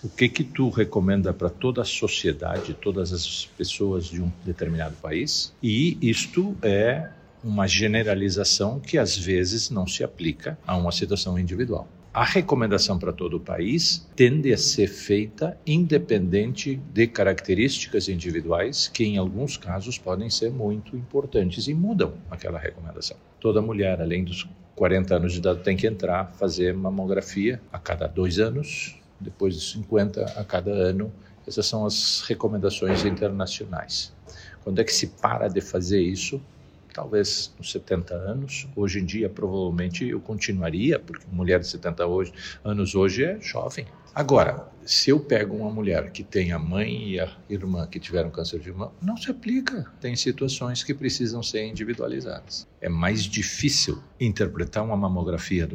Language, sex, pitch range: Portuguese, male, 90-115 Hz